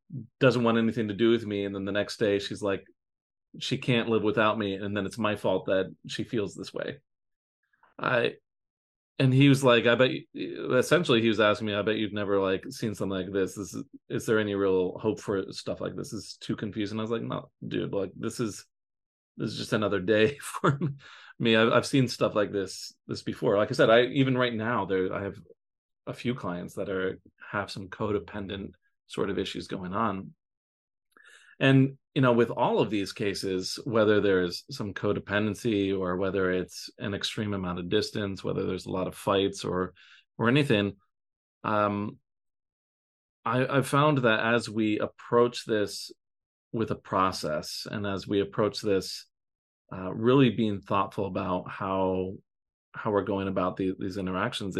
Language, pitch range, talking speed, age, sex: English, 95-115 Hz, 185 wpm, 30-49, male